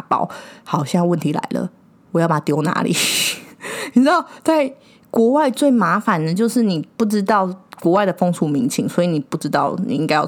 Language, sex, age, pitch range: Chinese, female, 20-39, 165-210 Hz